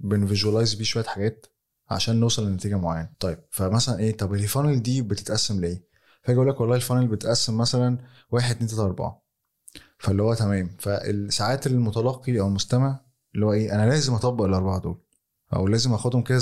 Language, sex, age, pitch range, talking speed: Arabic, male, 20-39, 100-125 Hz, 165 wpm